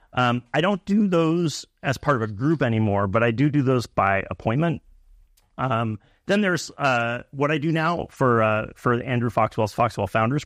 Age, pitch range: 30-49, 105-125 Hz